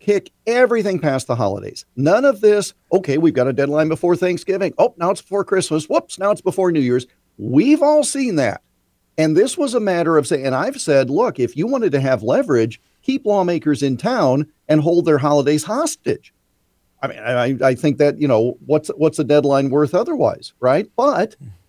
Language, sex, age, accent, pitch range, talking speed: English, male, 50-69, American, 135-195 Hz, 200 wpm